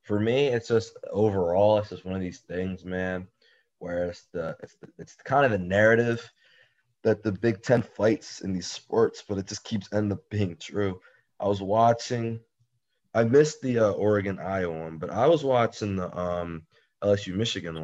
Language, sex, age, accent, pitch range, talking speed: English, male, 20-39, American, 90-115 Hz, 190 wpm